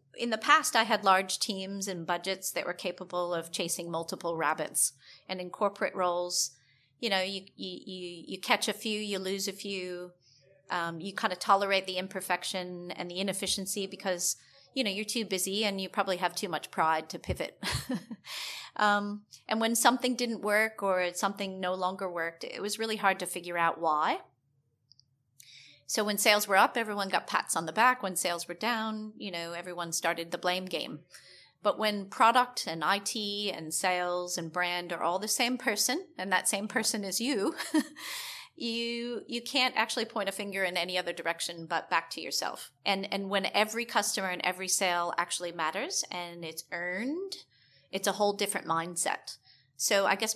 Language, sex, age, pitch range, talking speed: English, female, 30-49, 175-210 Hz, 185 wpm